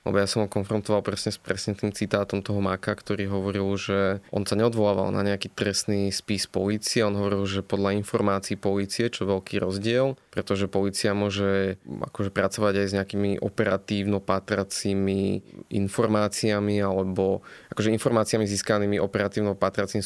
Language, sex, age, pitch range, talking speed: Slovak, male, 20-39, 100-105 Hz, 140 wpm